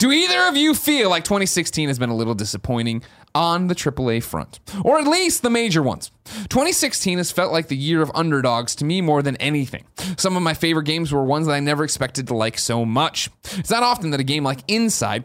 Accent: American